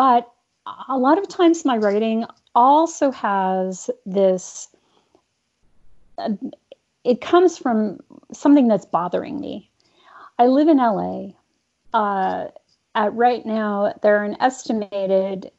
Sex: female